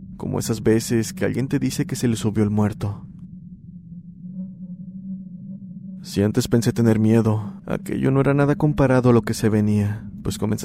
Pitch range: 110-175 Hz